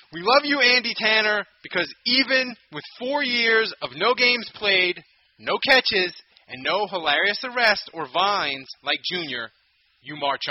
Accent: American